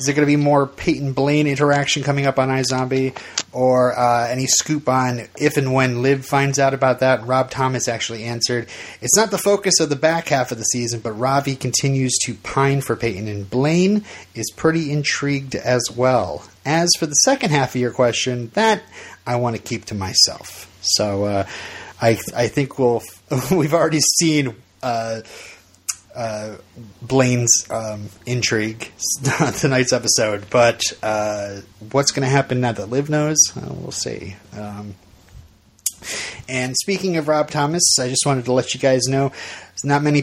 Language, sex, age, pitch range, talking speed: English, male, 30-49, 115-145 Hz, 175 wpm